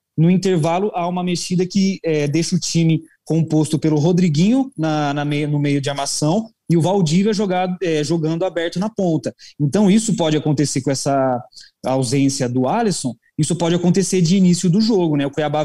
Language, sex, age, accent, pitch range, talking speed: Portuguese, male, 20-39, Brazilian, 140-170 Hz, 185 wpm